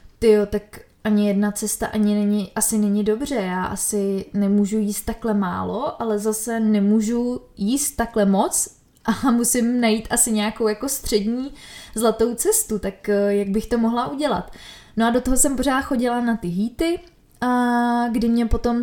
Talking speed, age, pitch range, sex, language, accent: 165 wpm, 20-39, 205-235 Hz, female, Czech, native